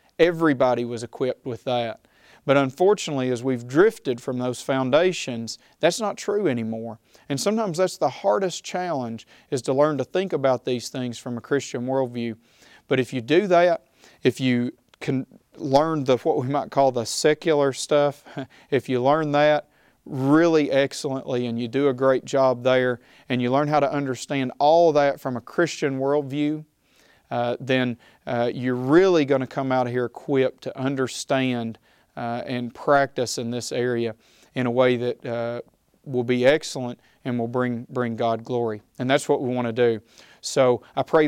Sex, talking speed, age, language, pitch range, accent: male, 175 wpm, 40-59, English, 125-145 Hz, American